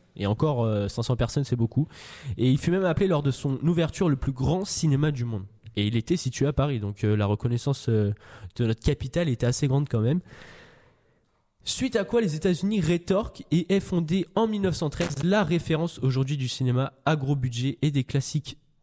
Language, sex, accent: French, male, French